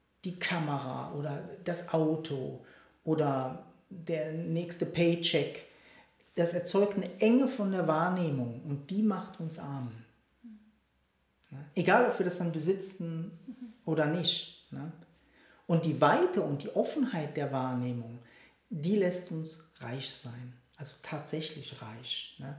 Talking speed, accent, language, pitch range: 120 wpm, German, German, 135-170 Hz